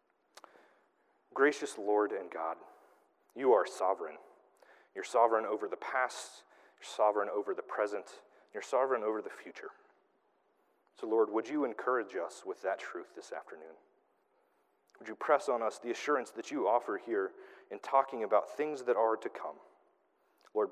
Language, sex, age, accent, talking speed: English, male, 30-49, American, 155 wpm